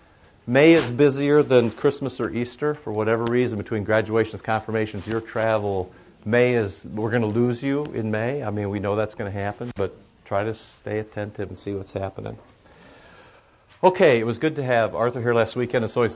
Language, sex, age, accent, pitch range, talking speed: English, male, 50-69, American, 100-125 Hz, 195 wpm